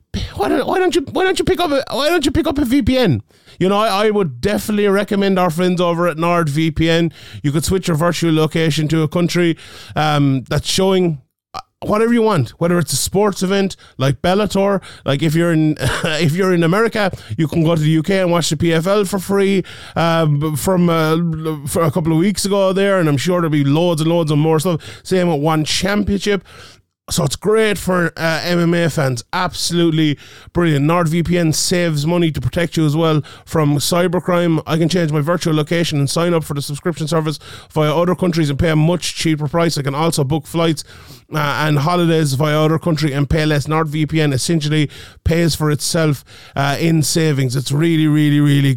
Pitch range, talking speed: 150-180 Hz, 200 wpm